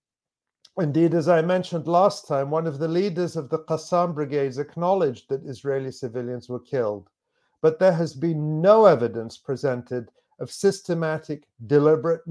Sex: male